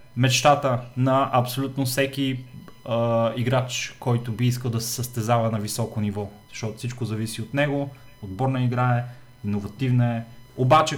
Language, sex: Bulgarian, male